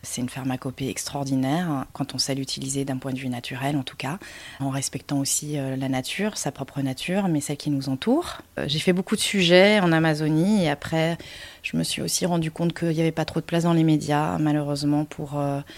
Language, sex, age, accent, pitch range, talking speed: French, female, 30-49, French, 145-170 Hz, 215 wpm